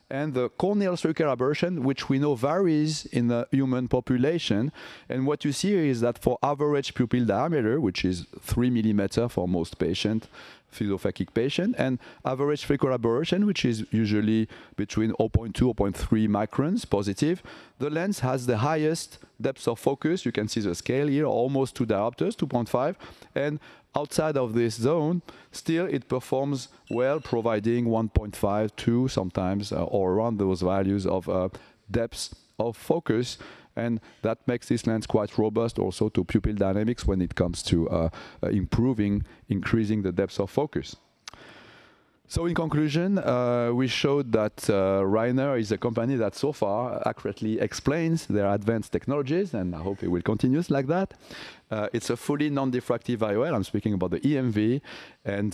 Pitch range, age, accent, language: 105-140 Hz, 40-59, French, English